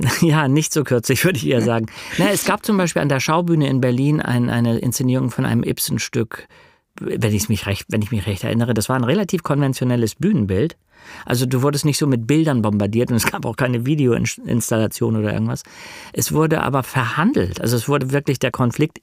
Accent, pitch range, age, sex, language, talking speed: German, 115-145 Hz, 50-69, male, German, 190 wpm